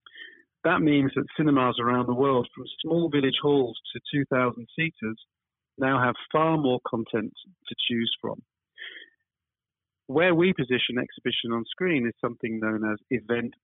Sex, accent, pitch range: male, British, 110-135 Hz